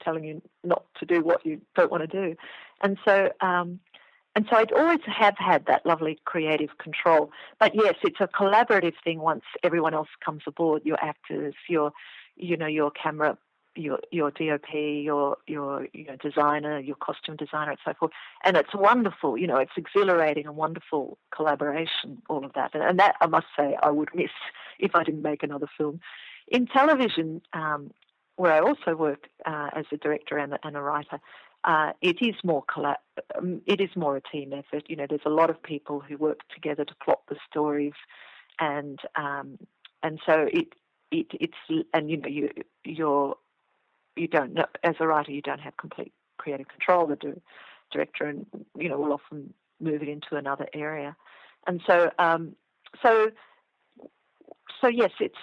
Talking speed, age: 175 wpm, 40-59